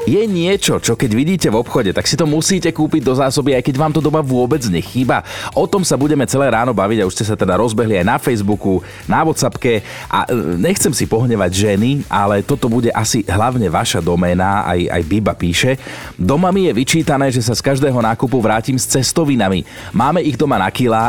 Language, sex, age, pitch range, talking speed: Slovak, male, 30-49, 95-130 Hz, 210 wpm